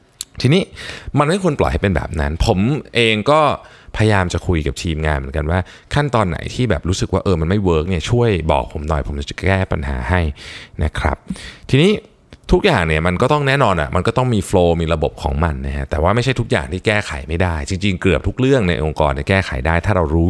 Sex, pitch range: male, 80-110 Hz